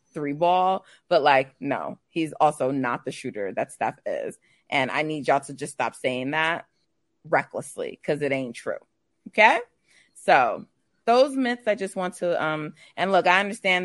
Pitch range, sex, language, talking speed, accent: 145-170 Hz, female, English, 175 wpm, American